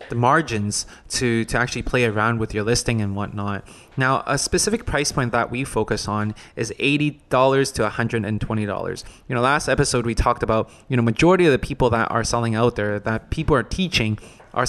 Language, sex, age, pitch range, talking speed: English, male, 20-39, 110-130 Hz, 195 wpm